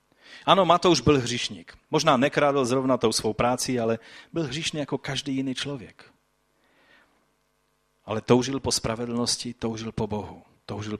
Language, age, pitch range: Czech, 30-49, 110-140 Hz